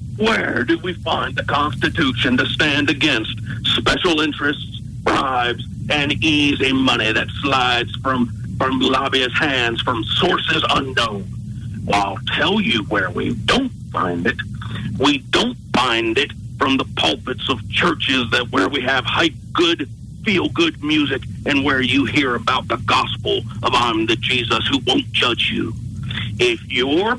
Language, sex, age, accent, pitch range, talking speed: English, male, 50-69, American, 115-145 Hz, 145 wpm